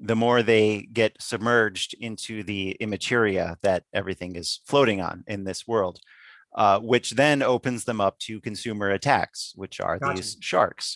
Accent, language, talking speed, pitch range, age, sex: American, English, 160 wpm, 110-135 Hz, 30-49, male